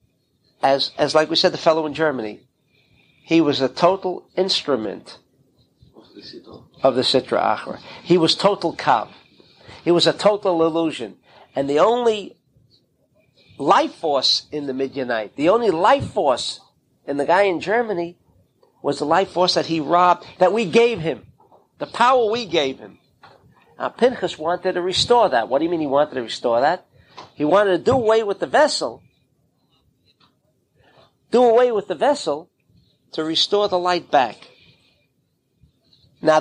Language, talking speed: English, 155 wpm